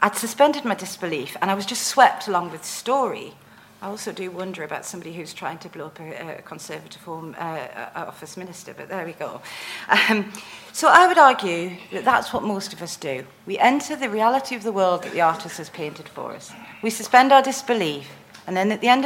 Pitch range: 165-220 Hz